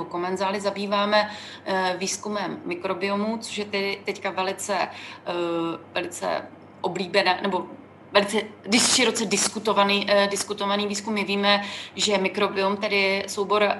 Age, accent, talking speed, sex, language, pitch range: 30-49, native, 100 wpm, female, Czech, 190-215 Hz